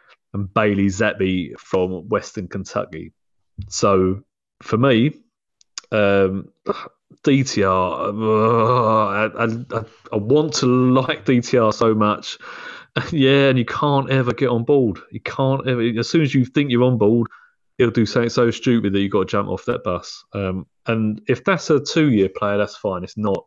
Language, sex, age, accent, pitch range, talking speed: English, male, 30-49, British, 100-125 Hz, 165 wpm